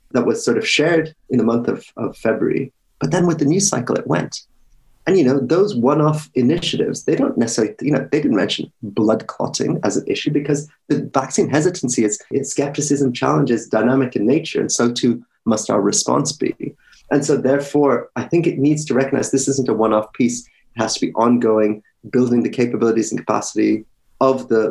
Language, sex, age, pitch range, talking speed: English, male, 30-49, 110-140 Hz, 200 wpm